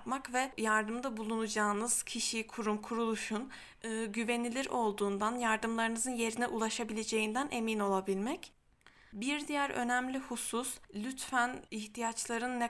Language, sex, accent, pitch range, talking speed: Turkish, female, native, 220-250 Hz, 95 wpm